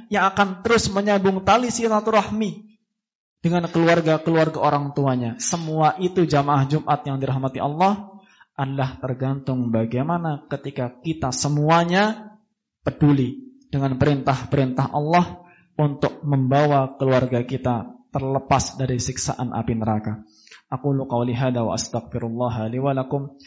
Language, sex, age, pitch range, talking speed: Indonesian, male, 20-39, 120-145 Hz, 105 wpm